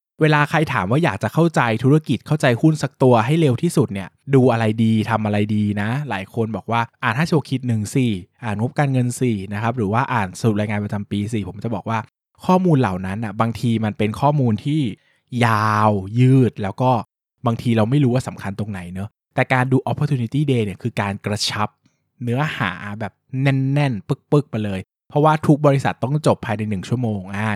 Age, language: 20-39, Thai